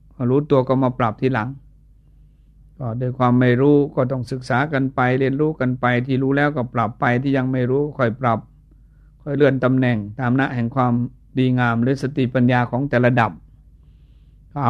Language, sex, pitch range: Thai, male, 120-135 Hz